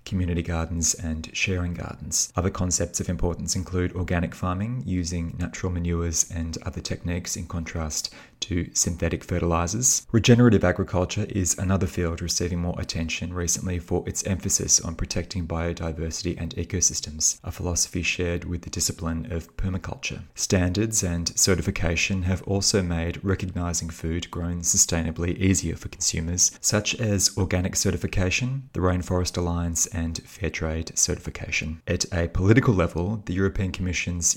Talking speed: 135 wpm